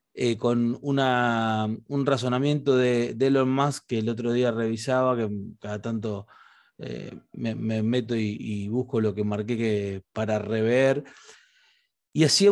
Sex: male